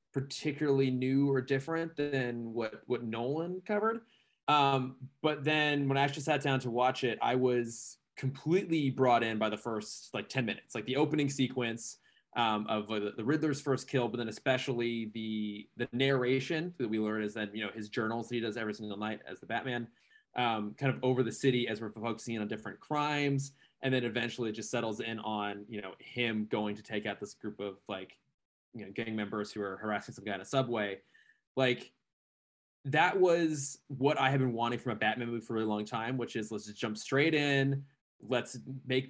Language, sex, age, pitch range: English, male, 20-39, 110-140 Hz